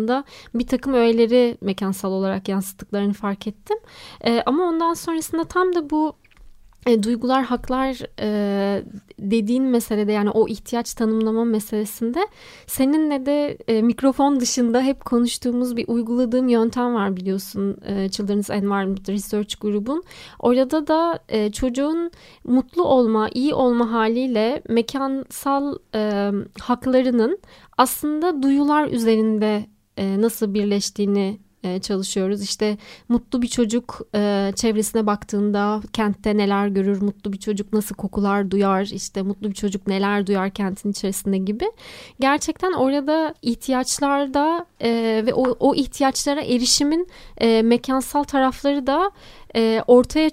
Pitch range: 205-270 Hz